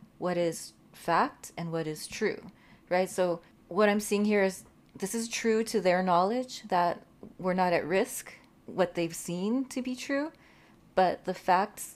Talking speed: 170 wpm